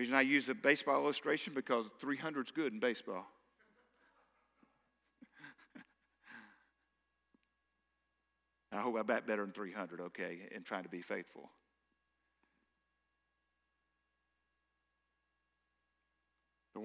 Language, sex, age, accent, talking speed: English, male, 50-69, American, 85 wpm